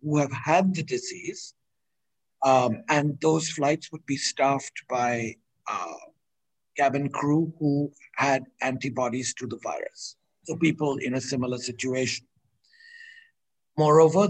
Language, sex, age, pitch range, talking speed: English, male, 60-79, 135-175 Hz, 120 wpm